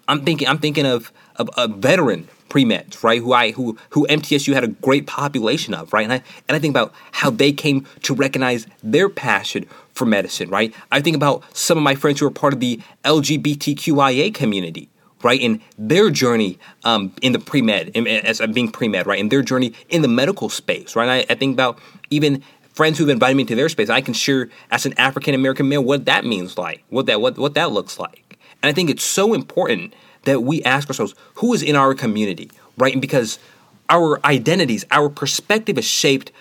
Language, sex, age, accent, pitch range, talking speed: English, male, 30-49, American, 125-150 Hz, 210 wpm